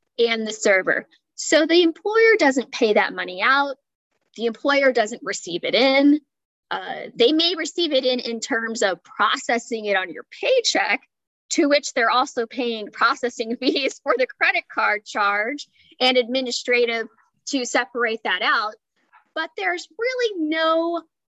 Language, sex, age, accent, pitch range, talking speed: English, female, 10-29, American, 215-280 Hz, 150 wpm